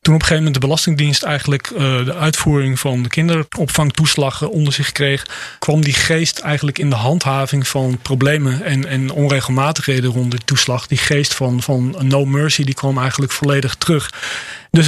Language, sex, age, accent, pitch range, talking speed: Dutch, male, 40-59, Dutch, 135-155 Hz, 180 wpm